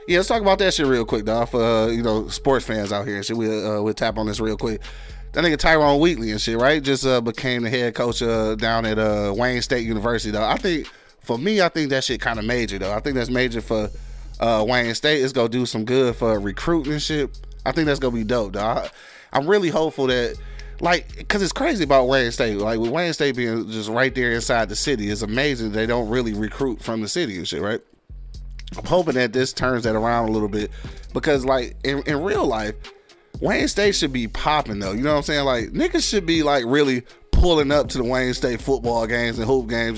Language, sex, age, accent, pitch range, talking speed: English, male, 20-39, American, 115-145 Hz, 245 wpm